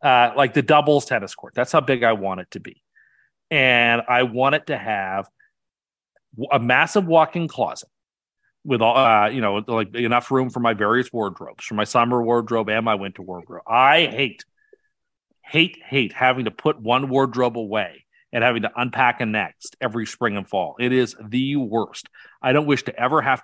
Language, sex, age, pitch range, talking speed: English, male, 40-59, 110-135 Hz, 190 wpm